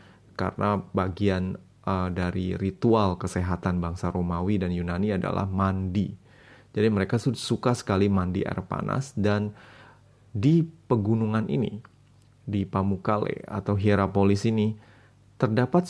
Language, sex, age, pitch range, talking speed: Indonesian, male, 20-39, 95-110 Hz, 110 wpm